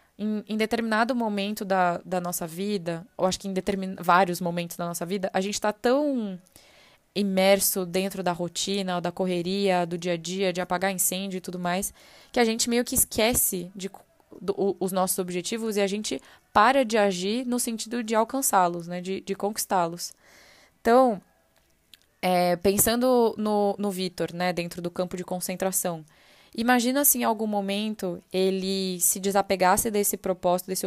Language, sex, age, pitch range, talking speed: Portuguese, female, 10-29, 180-215 Hz, 155 wpm